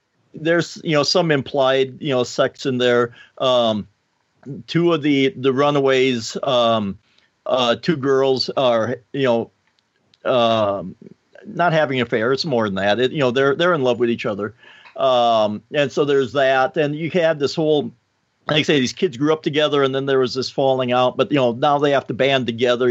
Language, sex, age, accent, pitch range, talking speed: English, male, 50-69, American, 120-145 Hz, 195 wpm